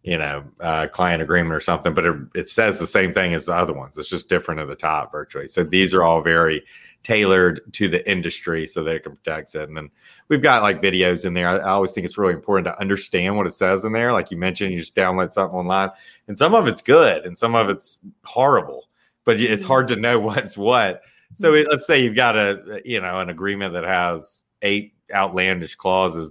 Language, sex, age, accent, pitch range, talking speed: English, male, 40-59, American, 90-110 Hz, 235 wpm